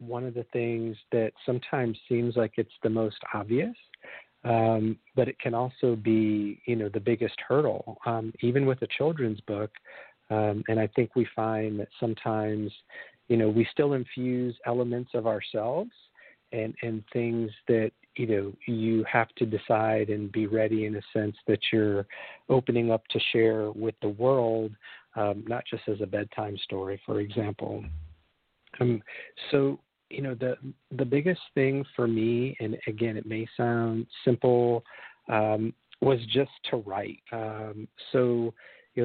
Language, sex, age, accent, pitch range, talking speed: English, male, 50-69, American, 110-120 Hz, 160 wpm